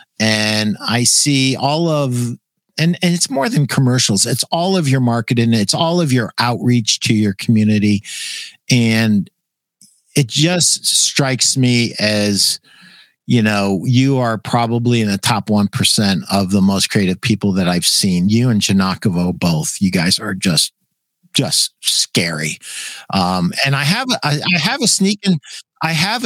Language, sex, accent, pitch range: English, male, American, 115-160 Hz